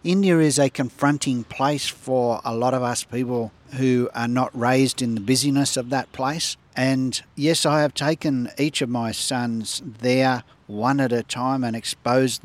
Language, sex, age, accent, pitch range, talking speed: English, male, 50-69, Australian, 110-135 Hz, 180 wpm